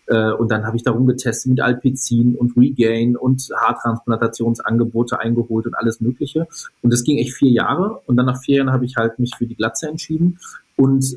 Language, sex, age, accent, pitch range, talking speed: German, male, 30-49, German, 115-135 Hz, 195 wpm